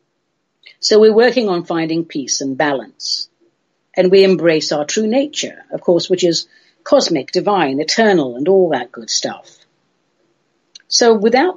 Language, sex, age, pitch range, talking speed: English, female, 60-79, 165-225 Hz, 145 wpm